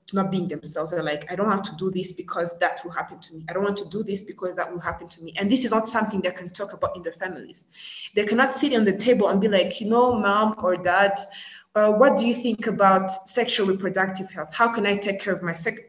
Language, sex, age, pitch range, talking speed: English, female, 20-39, 185-230 Hz, 270 wpm